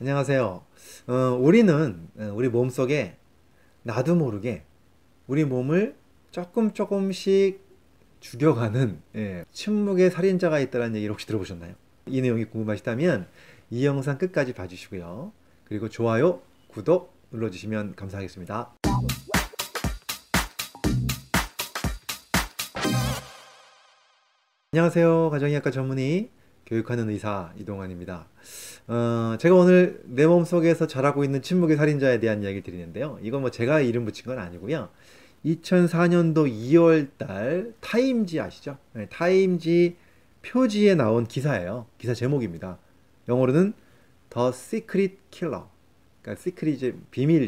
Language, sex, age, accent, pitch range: Korean, male, 30-49, native, 105-170 Hz